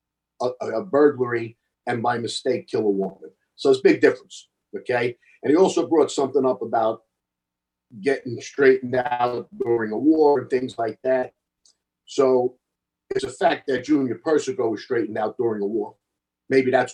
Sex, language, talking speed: male, English, 165 wpm